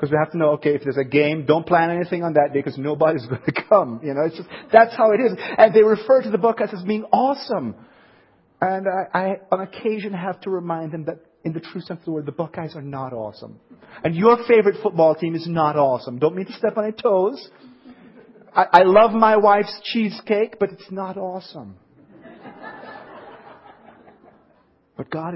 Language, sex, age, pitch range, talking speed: English, male, 40-59, 150-200 Hz, 205 wpm